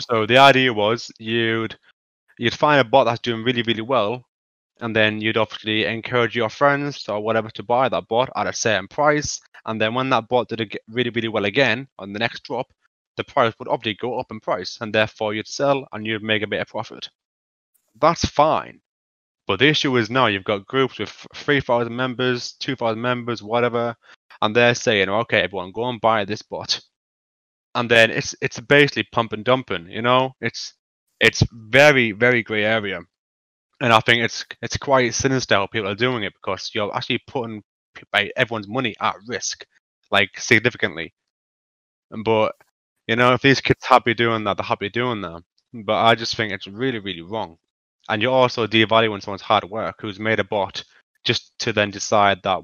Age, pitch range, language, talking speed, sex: 20-39, 105-125 Hz, English, 185 wpm, male